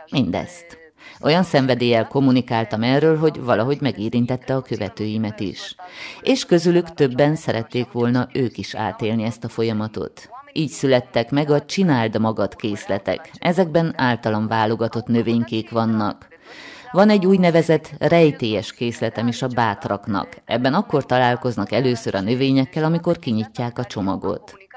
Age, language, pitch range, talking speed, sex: 30-49, Hungarian, 115-145 Hz, 125 wpm, female